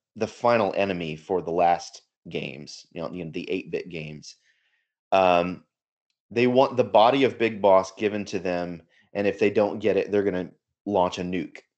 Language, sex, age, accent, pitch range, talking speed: English, male, 30-49, American, 90-115 Hz, 195 wpm